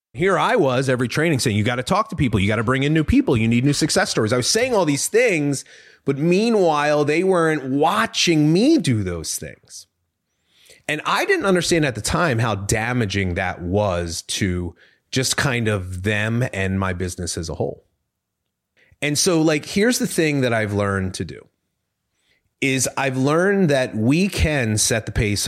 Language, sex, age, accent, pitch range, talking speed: English, male, 30-49, American, 100-145 Hz, 190 wpm